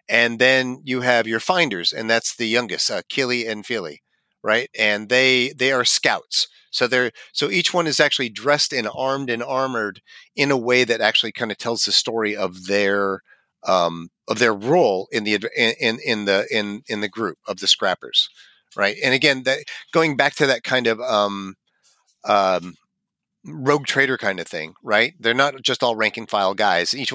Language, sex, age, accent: English, male, 40-59, American